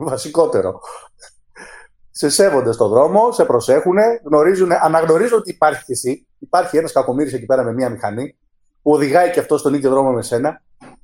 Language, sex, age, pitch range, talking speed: Greek, male, 30-49, 160-240 Hz, 160 wpm